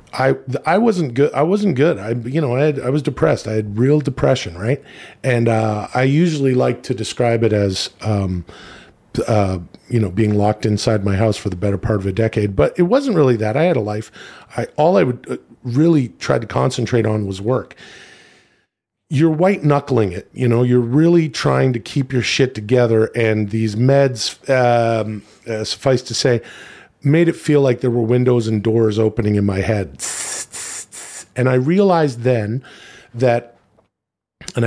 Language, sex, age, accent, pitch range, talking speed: English, male, 40-59, American, 110-140 Hz, 185 wpm